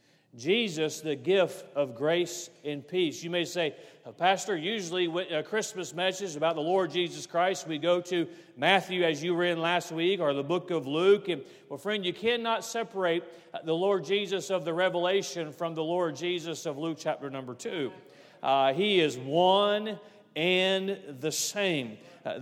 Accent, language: American, English